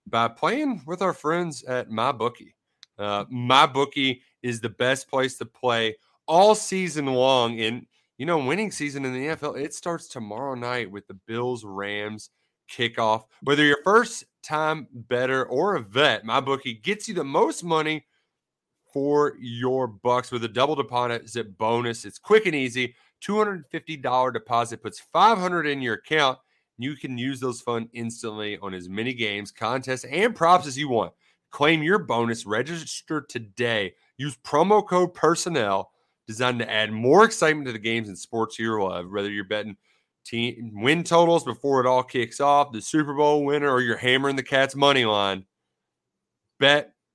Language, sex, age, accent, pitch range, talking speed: English, male, 30-49, American, 115-150 Hz, 165 wpm